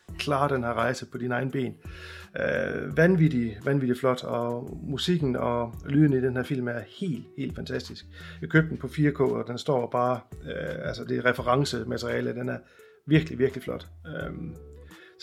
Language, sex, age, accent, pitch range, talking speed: Danish, male, 30-49, native, 115-140 Hz, 170 wpm